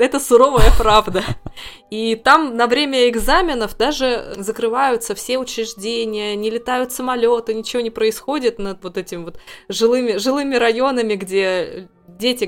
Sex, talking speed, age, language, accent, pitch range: female, 130 wpm, 20-39, Russian, native, 190-230 Hz